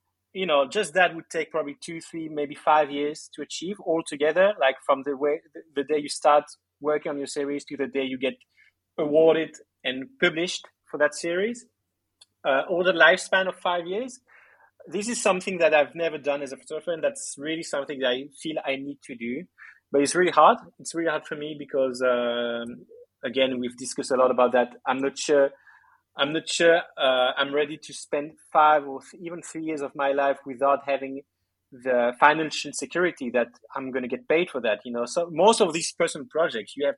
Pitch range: 135-165 Hz